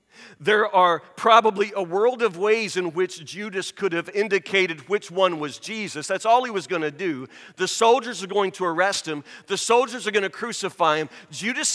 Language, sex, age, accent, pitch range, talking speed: English, male, 40-59, American, 190-240 Hz, 200 wpm